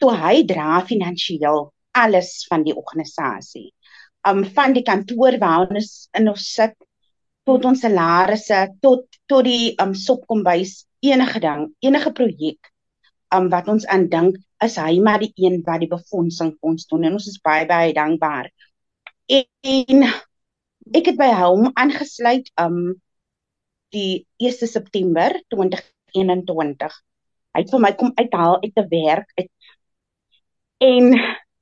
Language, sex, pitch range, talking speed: English, female, 180-250 Hz, 135 wpm